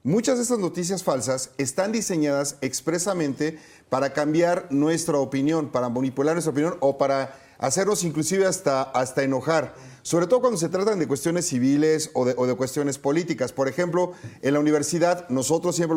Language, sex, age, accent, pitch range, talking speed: Spanish, male, 40-59, Mexican, 140-175 Hz, 165 wpm